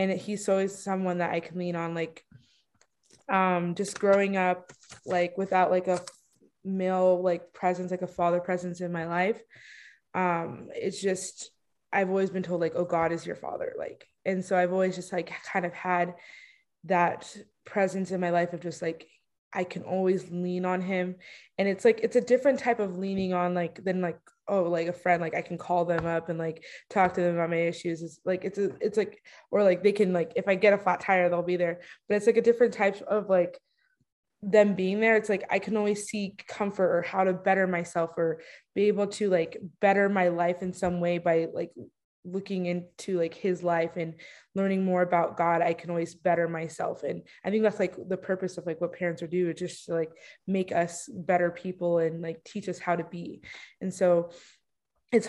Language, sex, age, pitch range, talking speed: English, female, 20-39, 175-195 Hz, 215 wpm